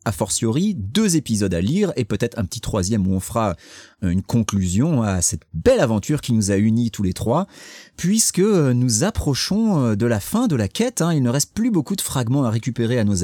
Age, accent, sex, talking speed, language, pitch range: 30-49, French, male, 215 wpm, French, 110-155 Hz